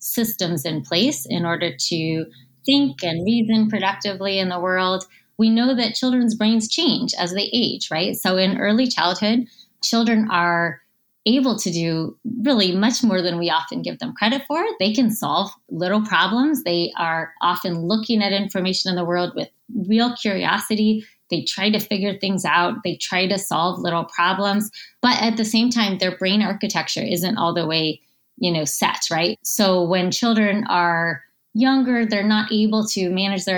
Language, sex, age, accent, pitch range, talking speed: English, female, 20-39, American, 170-215 Hz, 175 wpm